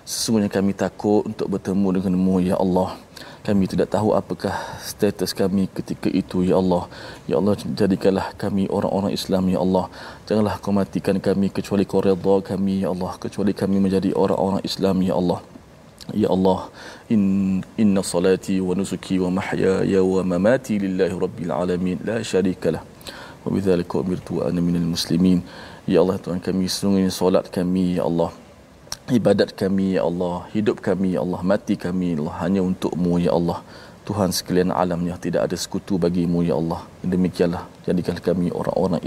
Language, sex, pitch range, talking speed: Malayalam, male, 90-95 Hz, 160 wpm